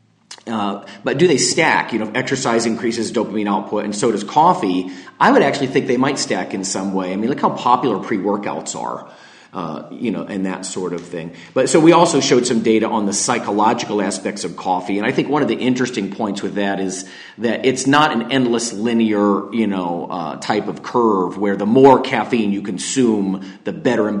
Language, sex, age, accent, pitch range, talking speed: English, male, 40-59, American, 100-130 Hz, 210 wpm